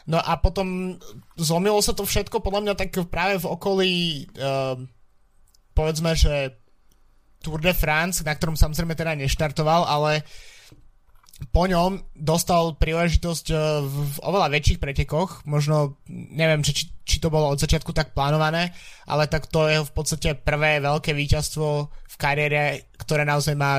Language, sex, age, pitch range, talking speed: Slovak, male, 20-39, 145-160 Hz, 145 wpm